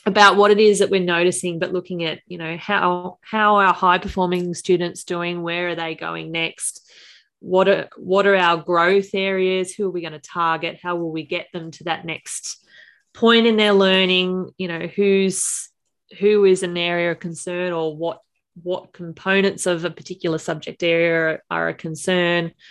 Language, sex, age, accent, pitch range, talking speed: English, female, 20-39, Australian, 165-195 Hz, 190 wpm